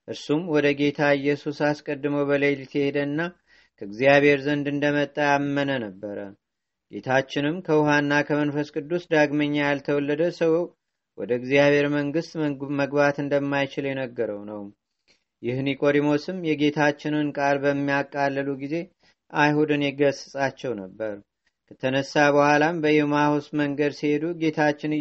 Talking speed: 95 wpm